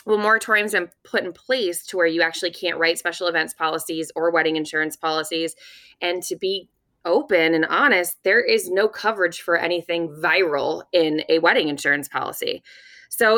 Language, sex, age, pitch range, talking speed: English, female, 20-39, 170-215 Hz, 175 wpm